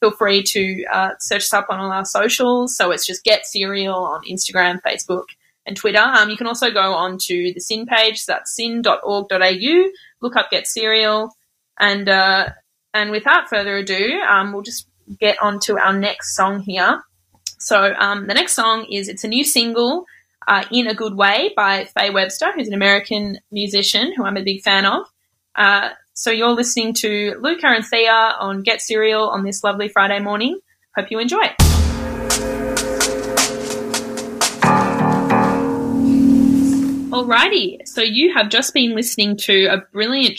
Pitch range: 195-230 Hz